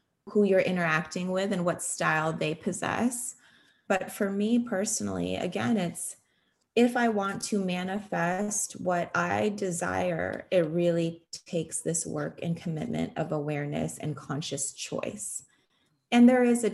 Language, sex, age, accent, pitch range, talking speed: English, female, 20-39, American, 170-210 Hz, 140 wpm